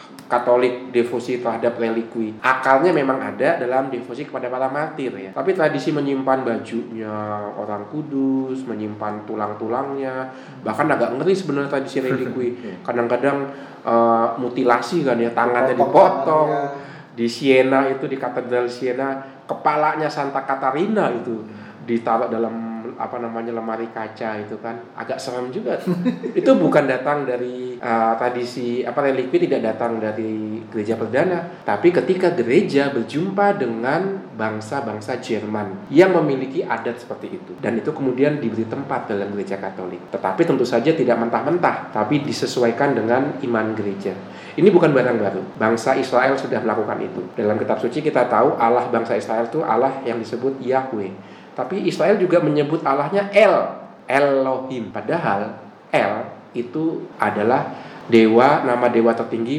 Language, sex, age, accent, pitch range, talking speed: Indonesian, male, 20-39, native, 115-140 Hz, 135 wpm